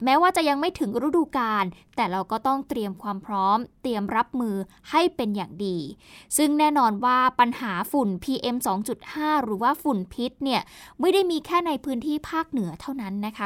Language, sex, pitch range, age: Thai, female, 210-285 Hz, 20-39